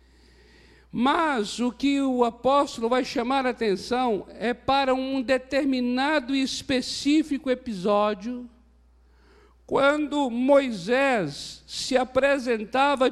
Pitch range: 205-265 Hz